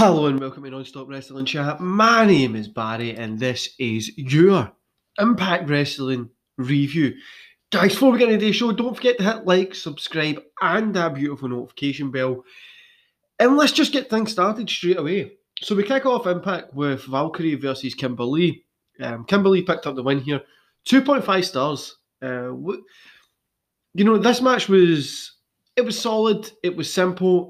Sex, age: male, 20-39